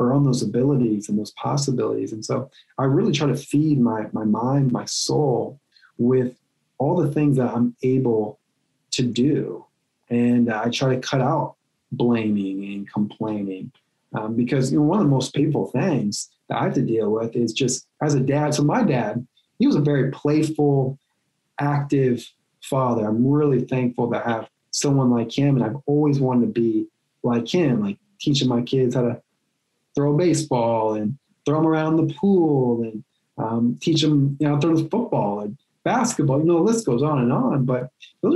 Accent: American